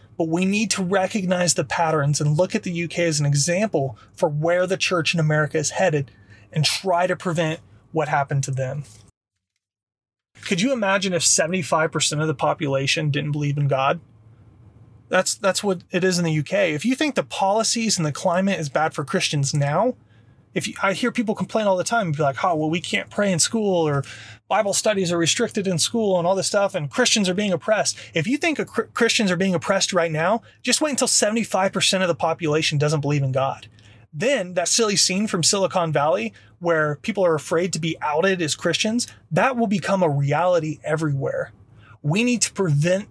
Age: 30-49